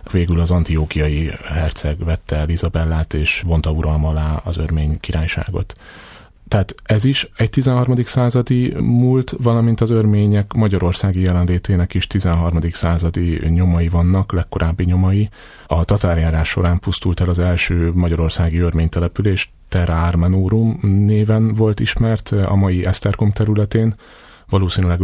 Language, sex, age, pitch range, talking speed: Hungarian, male, 30-49, 85-100 Hz, 120 wpm